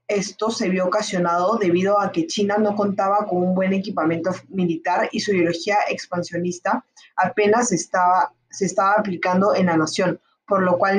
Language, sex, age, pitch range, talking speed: Spanish, female, 20-39, 180-210 Hz, 165 wpm